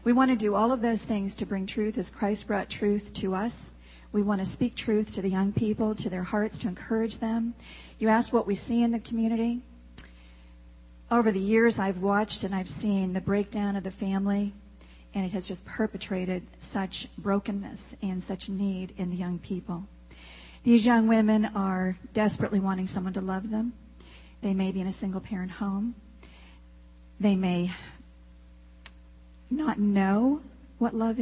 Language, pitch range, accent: English, 185-215 Hz, American